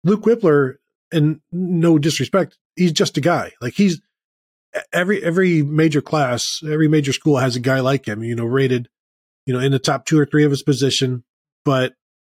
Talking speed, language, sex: 185 wpm, English, male